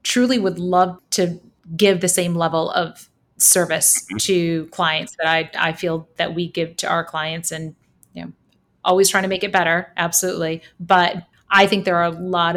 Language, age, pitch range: English, 30-49, 165-195 Hz